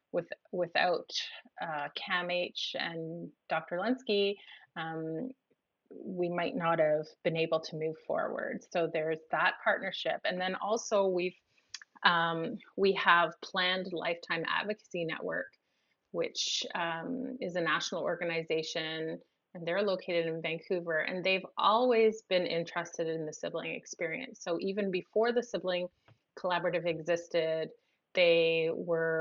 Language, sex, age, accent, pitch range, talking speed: English, female, 30-49, American, 160-190 Hz, 120 wpm